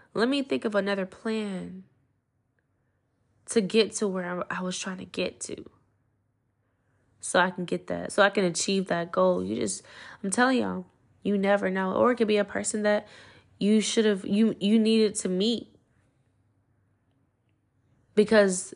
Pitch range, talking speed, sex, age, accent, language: 130-205 Hz, 160 wpm, female, 20-39, American, English